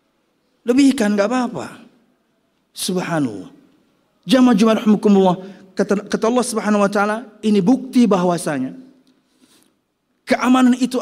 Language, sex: Indonesian, male